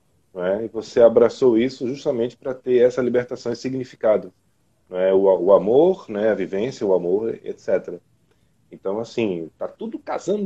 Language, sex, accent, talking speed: Portuguese, male, Brazilian, 150 wpm